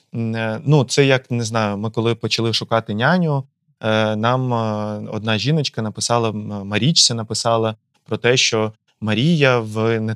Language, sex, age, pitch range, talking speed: Ukrainian, male, 20-39, 115-160 Hz, 130 wpm